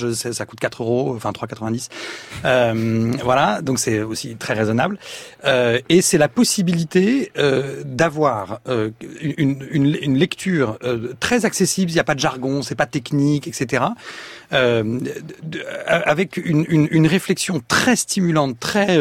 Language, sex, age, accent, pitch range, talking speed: French, male, 40-59, French, 120-155 Hz, 150 wpm